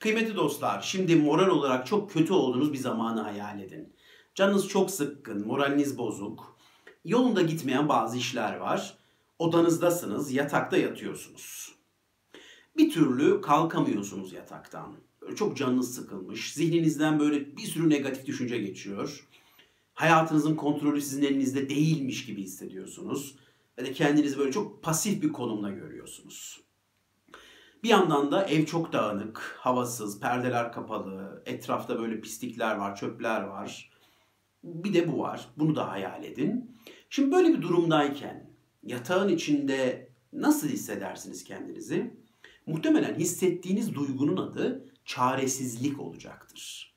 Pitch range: 125-175 Hz